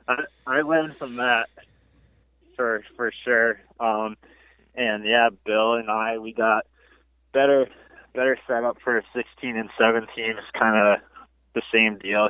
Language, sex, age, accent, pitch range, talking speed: English, male, 20-39, American, 100-120 Hz, 140 wpm